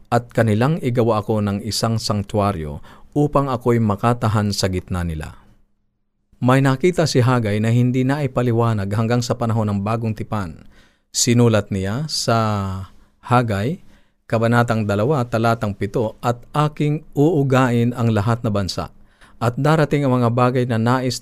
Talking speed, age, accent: 140 wpm, 40-59, native